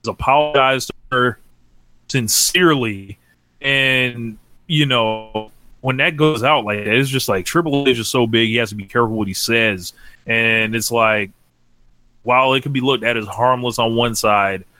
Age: 20-39